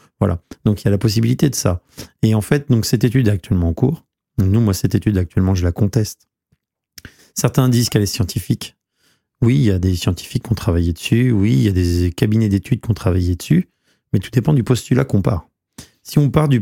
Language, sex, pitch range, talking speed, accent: French, male, 100-130 Hz, 230 wpm, French